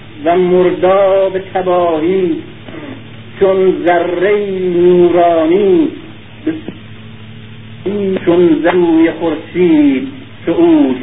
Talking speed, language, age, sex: 55 wpm, Persian, 50-69, male